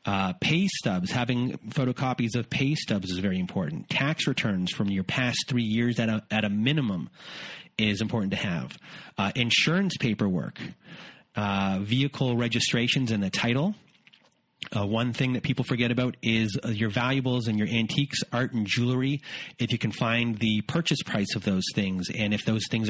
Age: 30-49